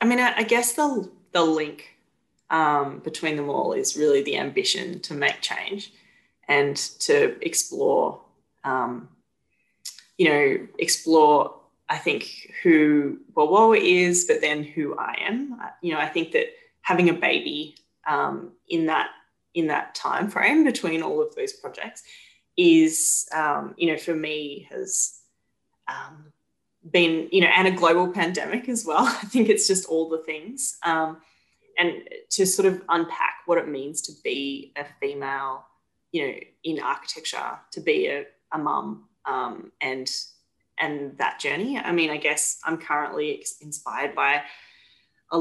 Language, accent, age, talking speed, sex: English, Australian, 20-39, 150 wpm, female